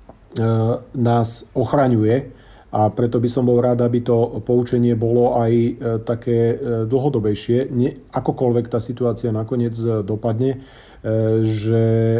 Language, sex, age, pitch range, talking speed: Slovak, male, 40-59, 110-120 Hz, 110 wpm